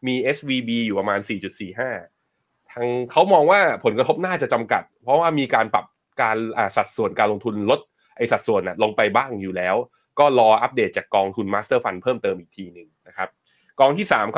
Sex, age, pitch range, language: male, 20-39, 105-135 Hz, Thai